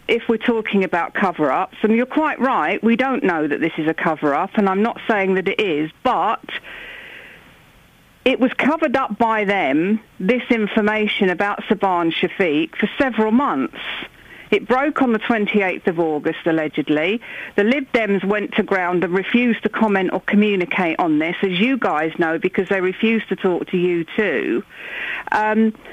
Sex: female